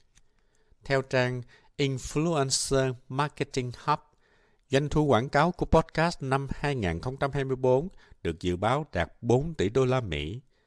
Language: Vietnamese